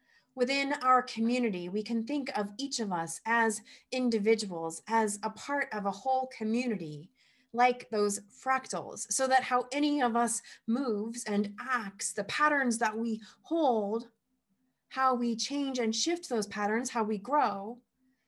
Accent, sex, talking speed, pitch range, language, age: American, female, 150 wpm, 210-255 Hz, English, 30-49